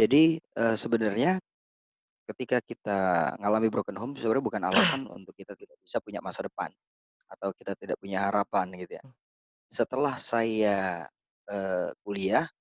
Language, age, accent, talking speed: Indonesian, 20-39, native, 130 wpm